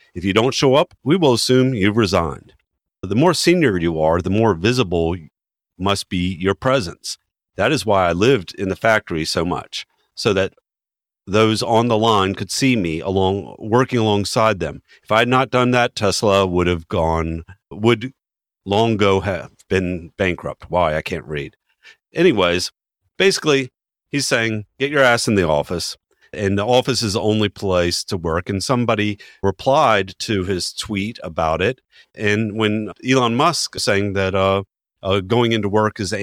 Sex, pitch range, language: male, 95-115 Hz, English